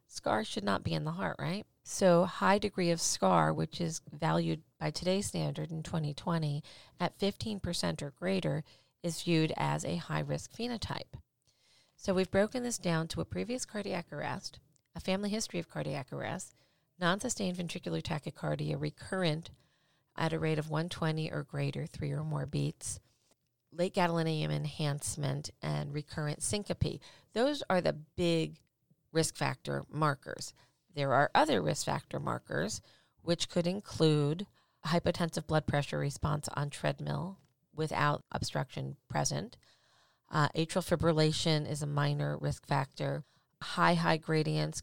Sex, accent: female, American